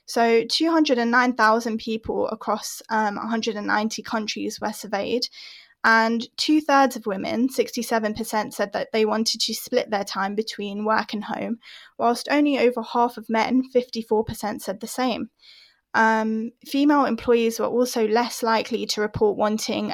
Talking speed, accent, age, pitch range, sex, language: 140 wpm, British, 10-29, 215-245 Hz, female, English